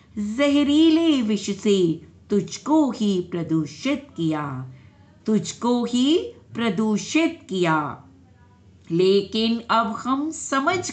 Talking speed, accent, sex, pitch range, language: 80 wpm, native, female, 165-255 Hz, Hindi